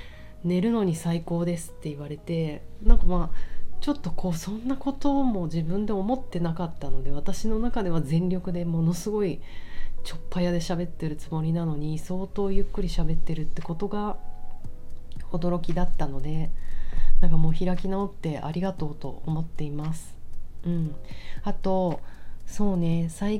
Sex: female